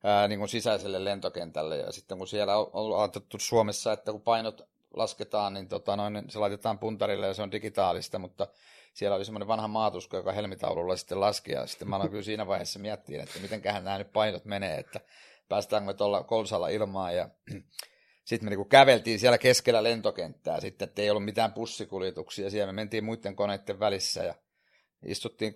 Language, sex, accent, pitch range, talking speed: Finnish, male, native, 100-115 Hz, 180 wpm